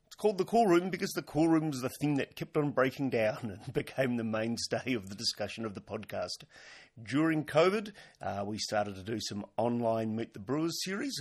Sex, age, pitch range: male, 40-59, 110-145 Hz